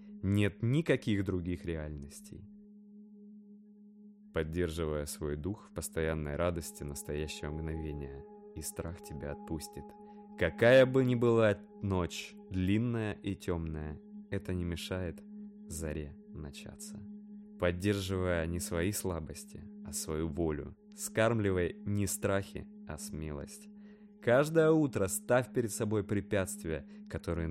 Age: 20-39